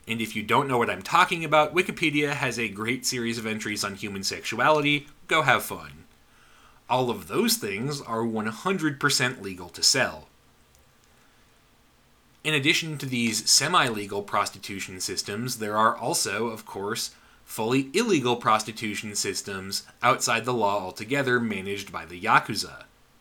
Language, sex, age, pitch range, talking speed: English, male, 30-49, 110-140 Hz, 140 wpm